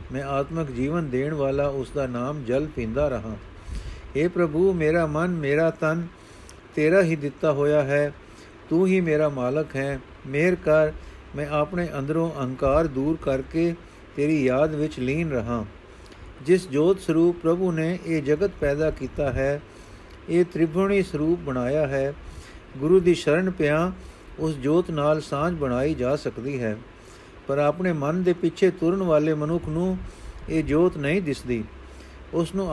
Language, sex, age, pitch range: Punjabi, male, 50-69, 135-170 Hz